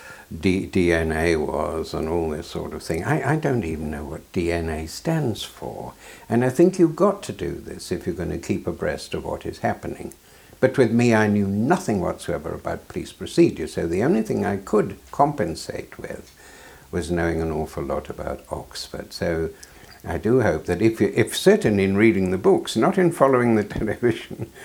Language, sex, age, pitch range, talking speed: English, male, 60-79, 85-115 Hz, 190 wpm